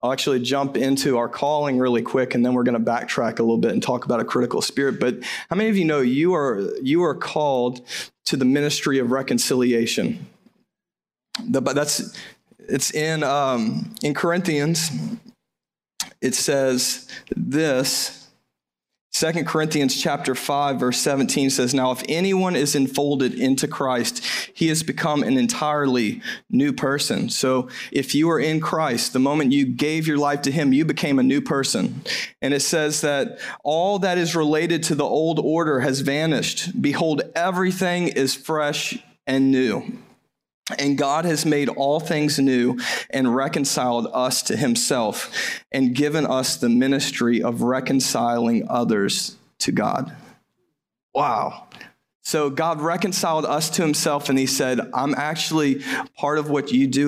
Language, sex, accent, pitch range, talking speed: English, male, American, 135-165 Hz, 155 wpm